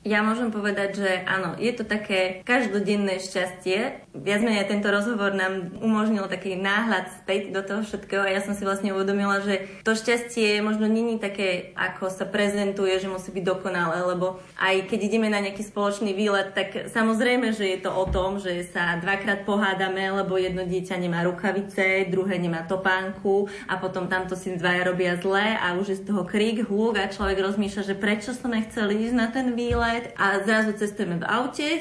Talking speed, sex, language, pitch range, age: 190 wpm, female, Slovak, 185-215 Hz, 20-39